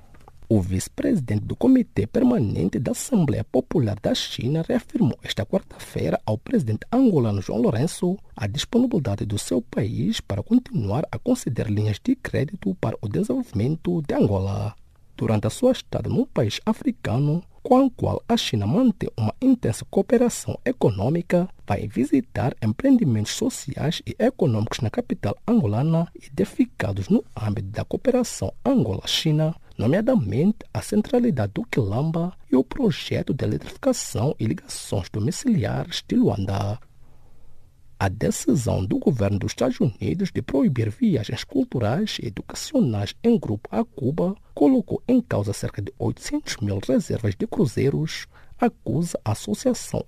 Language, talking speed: English, 135 wpm